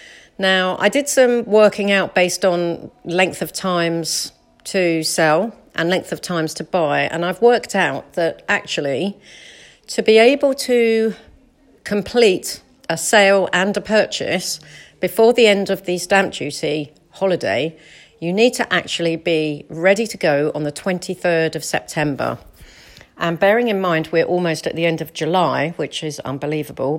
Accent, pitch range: British, 165-205 Hz